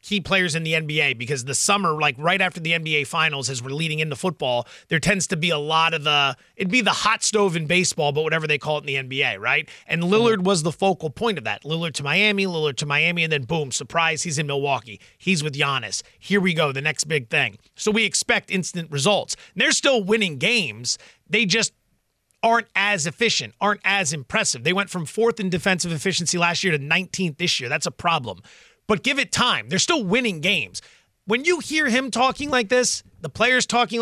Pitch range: 160-225 Hz